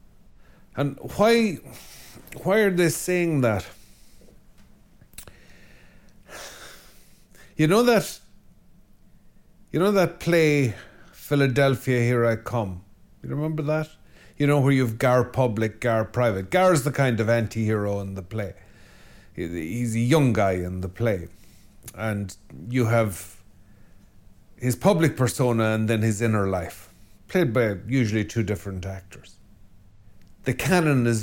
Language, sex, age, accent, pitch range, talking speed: English, male, 50-69, Irish, 100-130 Hz, 125 wpm